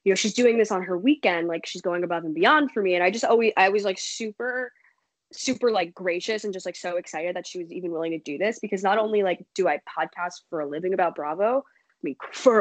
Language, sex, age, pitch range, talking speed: English, female, 10-29, 170-225 Hz, 260 wpm